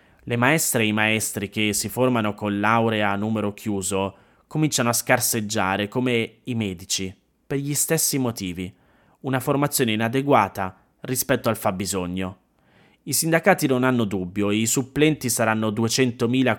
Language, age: Italian, 30-49